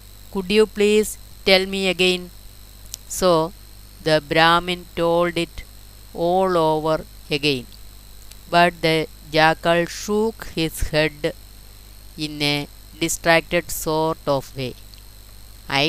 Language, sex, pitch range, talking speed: Malayalam, female, 105-165 Hz, 100 wpm